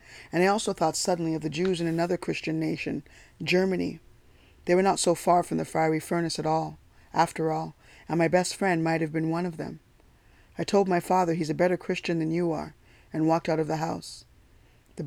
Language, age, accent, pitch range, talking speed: English, 20-39, American, 155-170 Hz, 215 wpm